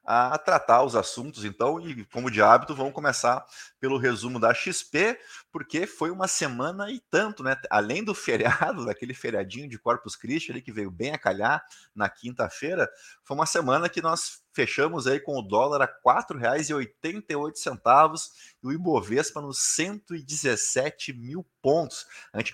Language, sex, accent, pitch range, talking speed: Portuguese, male, Brazilian, 105-150 Hz, 160 wpm